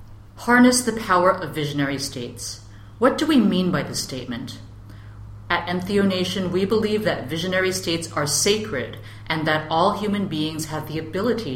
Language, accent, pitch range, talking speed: English, American, 135-180 Hz, 155 wpm